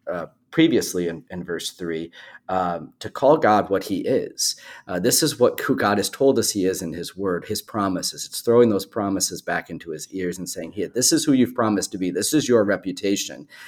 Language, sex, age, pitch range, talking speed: English, male, 40-59, 90-110 Hz, 225 wpm